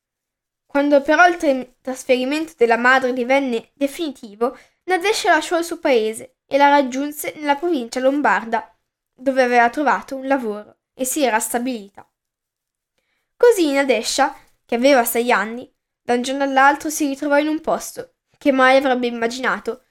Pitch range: 235-295 Hz